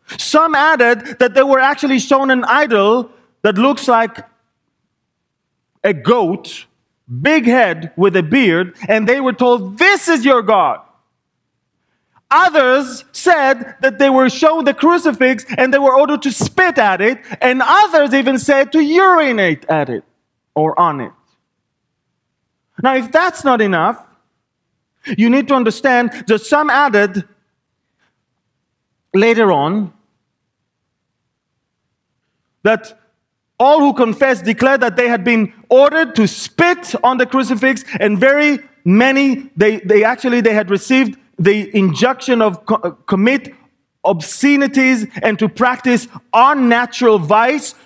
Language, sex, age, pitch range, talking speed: English, male, 30-49, 215-270 Hz, 130 wpm